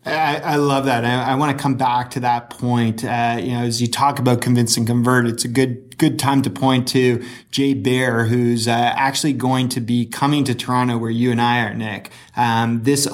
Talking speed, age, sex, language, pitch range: 230 wpm, 20-39, male, English, 120-135 Hz